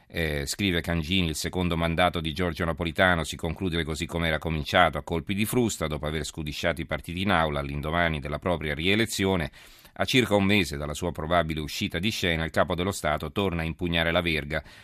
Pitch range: 75-95 Hz